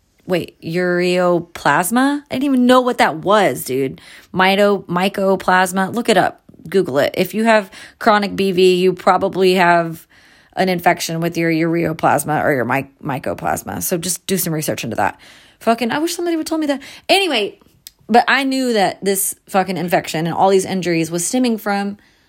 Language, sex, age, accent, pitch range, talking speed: English, female, 30-49, American, 175-215 Hz, 175 wpm